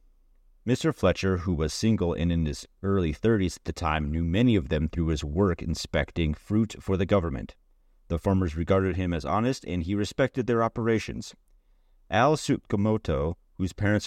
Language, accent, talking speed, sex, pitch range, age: English, American, 170 wpm, male, 80-100 Hz, 30-49